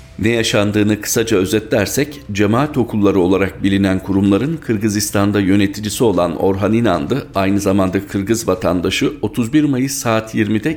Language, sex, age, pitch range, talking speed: Turkish, male, 50-69, 95-115 Hz, 125 wpm